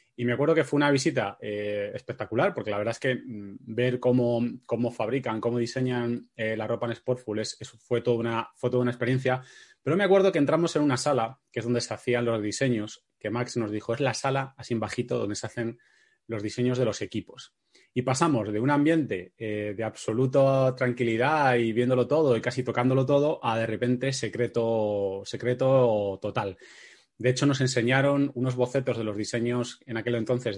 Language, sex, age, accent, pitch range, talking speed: Spanish, male, 20-39, Spanish, 115-130 Hz, 195 wpm